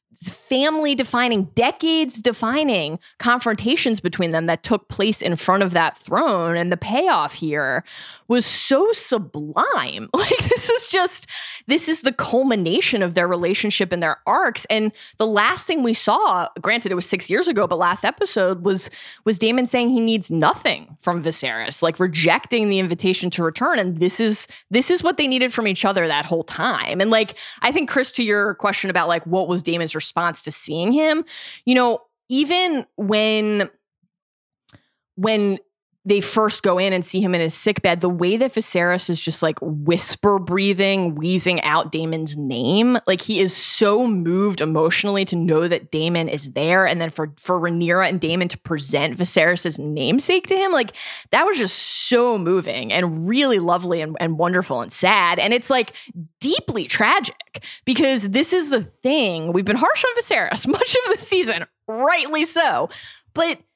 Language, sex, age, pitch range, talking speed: English, female, 20-39, 170-245 Hz, 175 wpm